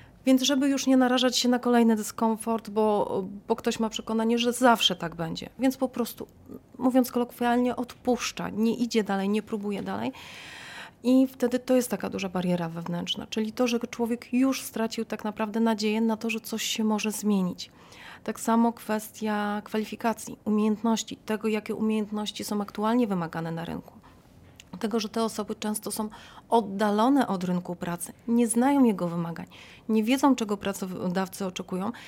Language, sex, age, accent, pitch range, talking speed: Polish, female, 30-49, native, 200-235 Hz, 160 wpm